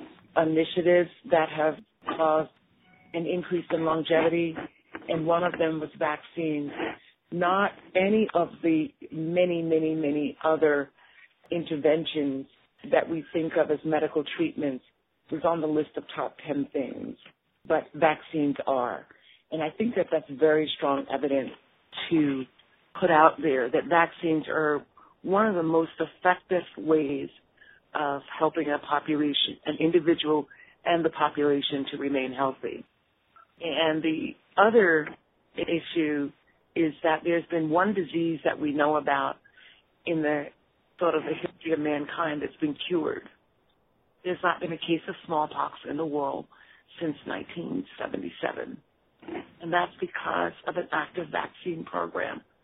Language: English